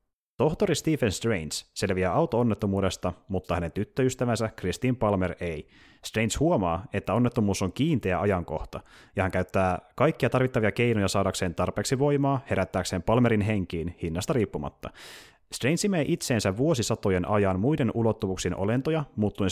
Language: Finnish